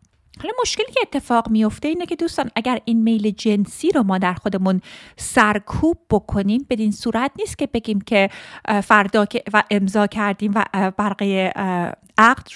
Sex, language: female, Persian